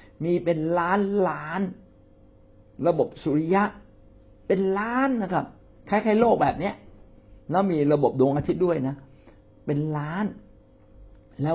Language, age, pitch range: Thai, 60-79, 105-170 Hz